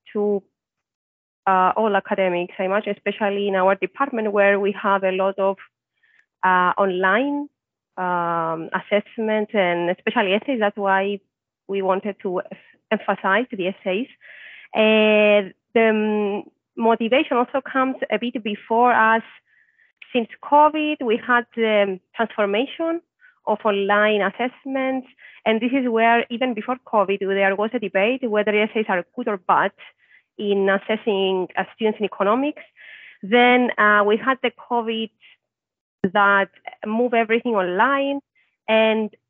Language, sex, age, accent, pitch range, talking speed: English, female, 30-49, Spanish, 200-245 Hz, 130 wpm